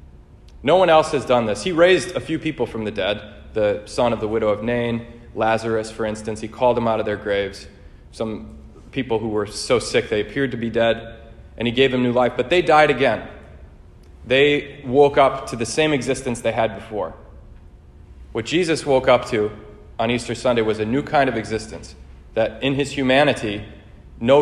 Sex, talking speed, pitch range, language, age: male, 200 wpm, 105-130 Hz, English, 30-49